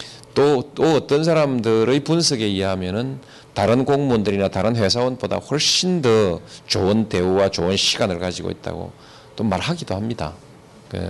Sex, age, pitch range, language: male, 40-59, 100-135 Hz, Korean